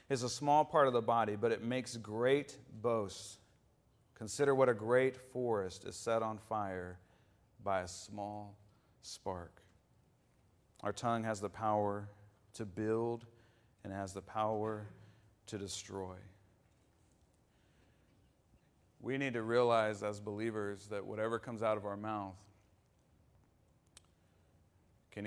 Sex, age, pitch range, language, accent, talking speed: male, 40-59, 100-125 Hz, English, American, 125 wpm